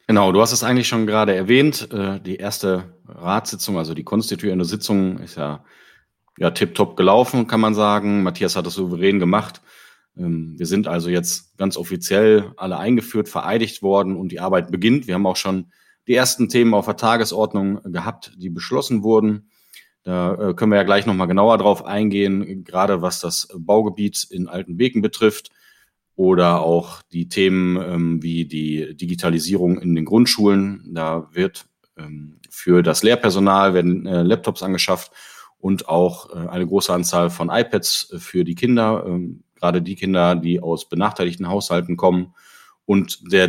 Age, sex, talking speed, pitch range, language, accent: 30-49, male, 160 wpm, 90-105 Hz, German, German